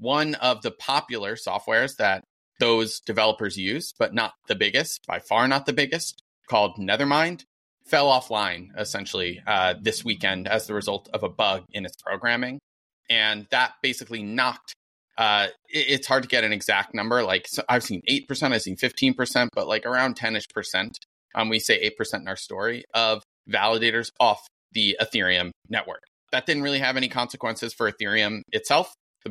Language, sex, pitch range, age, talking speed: English, male, 105-130 Hz, 30-49, 170 wpm